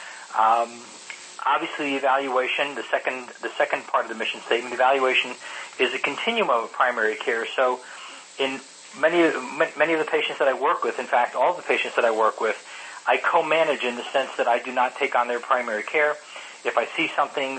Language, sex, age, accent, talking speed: English, male, 40-59, American, 195 wpm